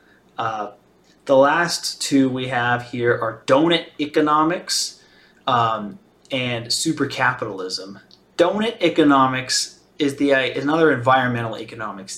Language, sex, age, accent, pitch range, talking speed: English, male, 30-49, American, 110-140 Hz, 115 wpm